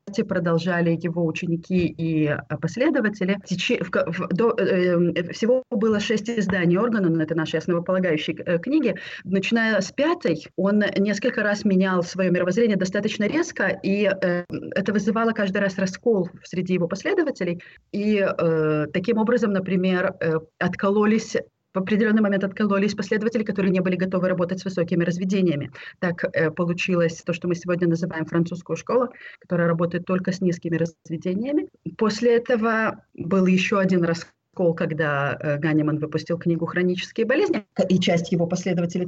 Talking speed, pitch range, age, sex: 125 wpm, 175-215 Hz, 30-49, female